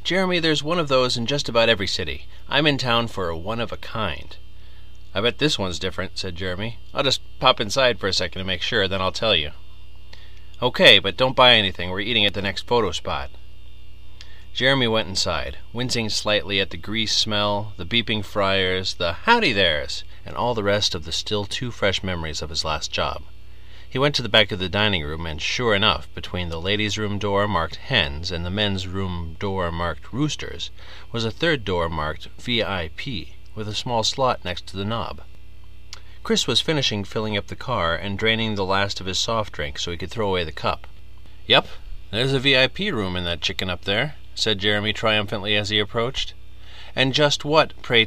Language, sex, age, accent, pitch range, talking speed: English, male, 30-49, American, 95-110 Hz, 200 wpm